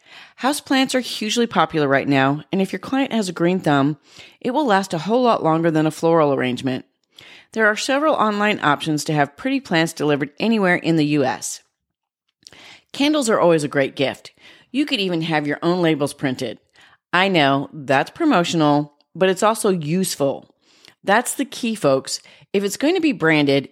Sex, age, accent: female, 30-49, American